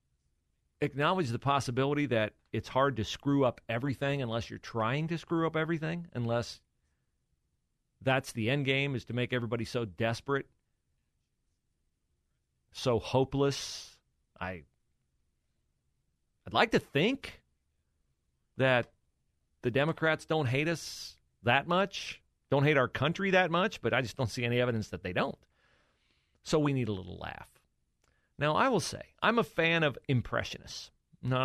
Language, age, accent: English, 40-59, American